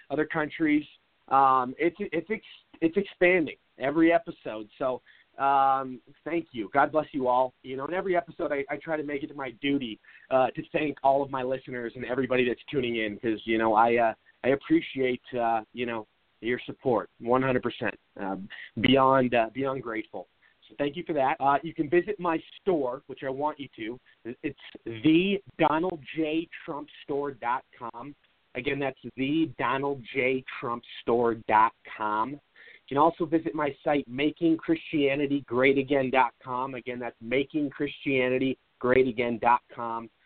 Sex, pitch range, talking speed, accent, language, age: male, 120-150 Hz, 135 wpm, American, English, 30-49